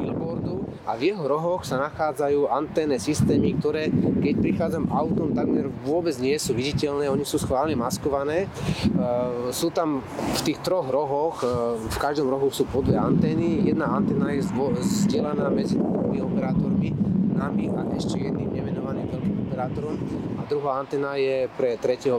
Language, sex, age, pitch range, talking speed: Slovak, male, 30-49, 125-150 Hz, 140 wpm